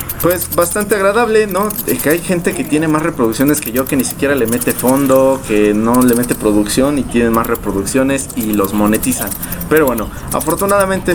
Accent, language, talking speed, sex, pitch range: Mexican, English, 185 wpm, male, 110-145 Hz